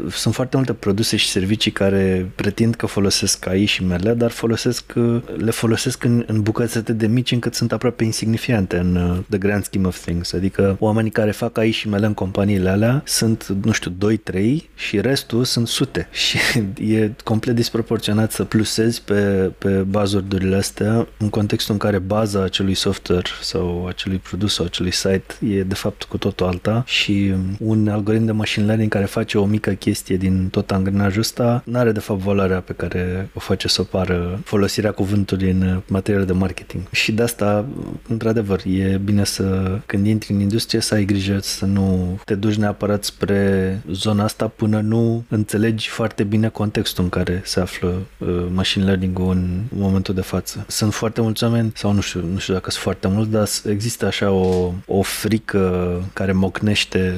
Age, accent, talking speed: 20-39, native, 180 wpm